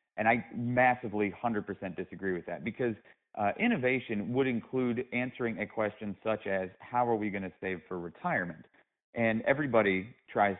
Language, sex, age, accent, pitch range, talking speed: English, male, 40-59, American, 100-120 Hz, 160 wpm